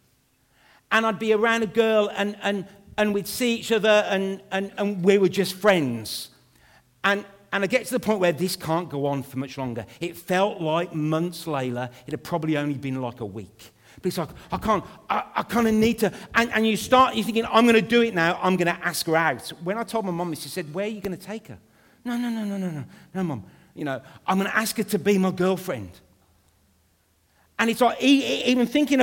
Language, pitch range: English, 170-225 Hz